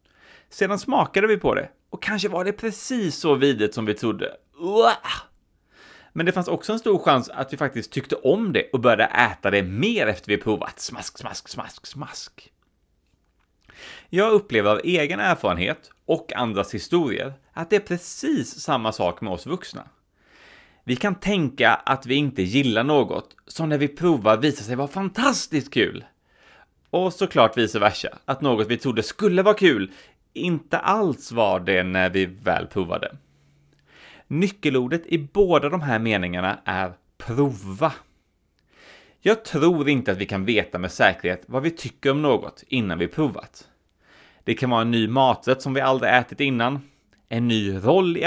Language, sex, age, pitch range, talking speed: English, male, 30-49, 110-170 Hz, 165 wpm